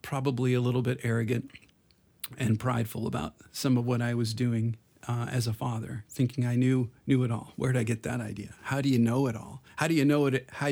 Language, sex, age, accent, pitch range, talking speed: English, male, 40-59, American, 115-135 Hz, 235 wpm